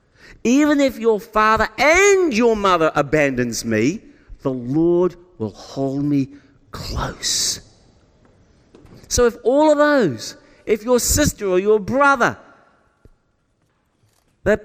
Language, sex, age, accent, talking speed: English, male, 50-69, British, 110 wpm